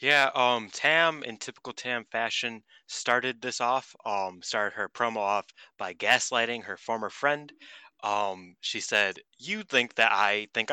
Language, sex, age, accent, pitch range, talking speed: English, male, 20-39, American, 105-130 Hz, 155 wpm